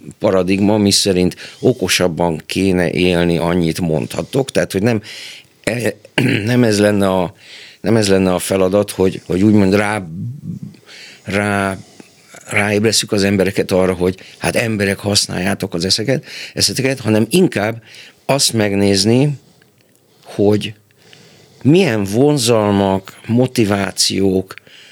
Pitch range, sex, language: 95-115 Hz, male, Hungarian